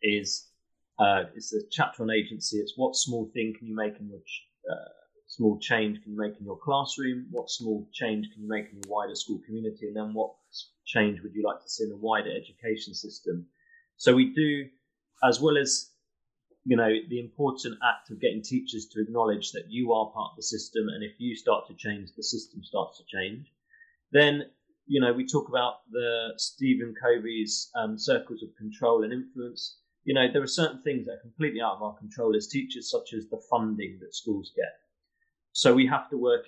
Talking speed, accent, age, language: 205 wpm, British, 30-49, English